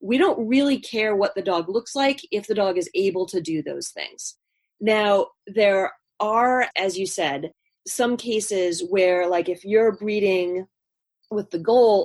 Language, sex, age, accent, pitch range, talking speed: English, female, 30-49, American, 180-235 Hz, 170 wpm